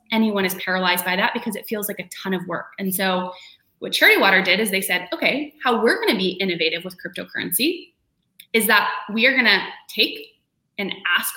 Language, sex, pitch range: English, female, 190-255 Hz